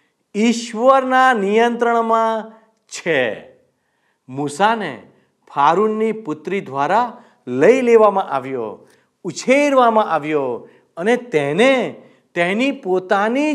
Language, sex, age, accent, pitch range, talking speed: Gujarati, male, 50-69, native, 170-250 Hz, 70 wpm